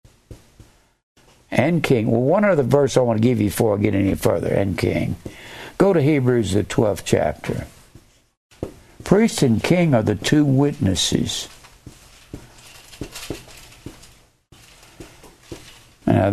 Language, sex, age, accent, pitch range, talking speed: English, male, 60-79, American, 110-160 Hz, 120 wpm